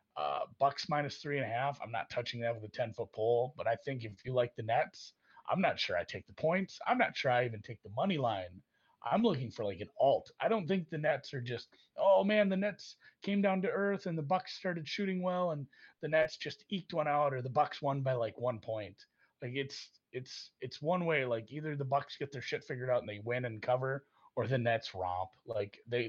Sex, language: male, English